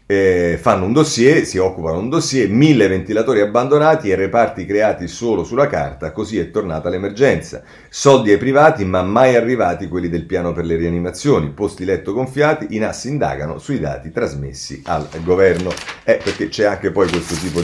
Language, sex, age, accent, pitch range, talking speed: Italian, male, 40-59, native, 85-125 Hz, 175 wpm